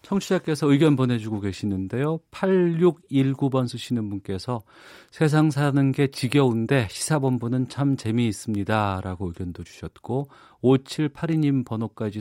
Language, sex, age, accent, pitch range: Korean, male, 40-59, native, 100-135 Hz